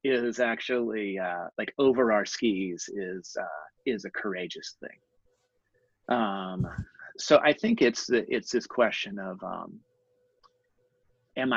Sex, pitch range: male, 95-125 Hz